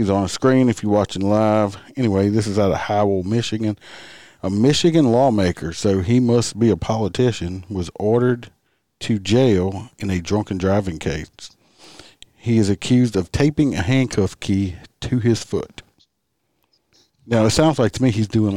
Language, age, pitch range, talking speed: English, 50-69, 90-115 Hz, 170 wpm